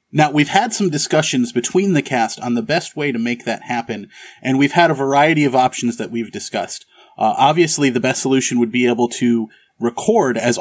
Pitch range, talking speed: 120-150 Hz, 210 wpm